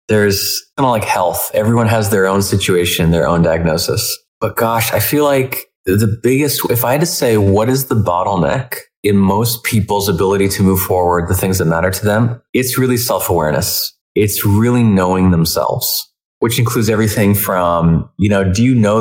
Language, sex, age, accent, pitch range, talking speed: English, male, 20-39, American, 100-125 Hz, 185 wpm